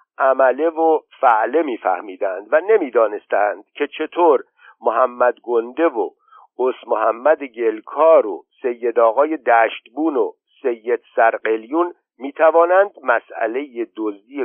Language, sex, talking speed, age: Persian, male, 105 wpm, 50-69